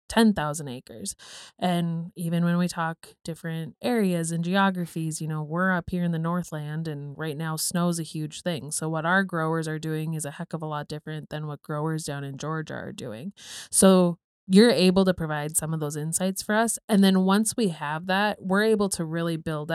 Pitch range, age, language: 155-190 Hz, 20-39, English